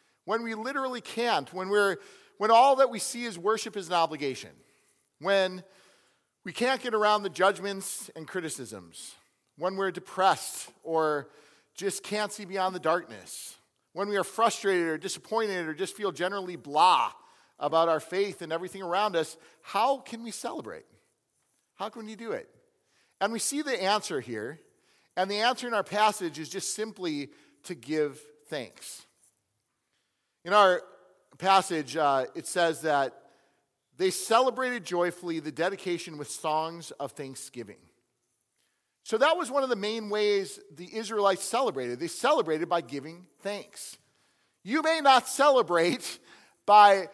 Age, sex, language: 40-59, male, English